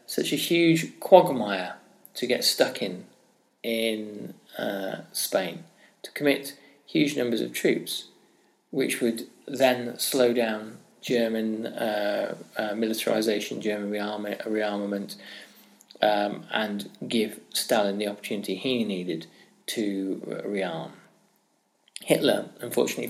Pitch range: 100-125 Hz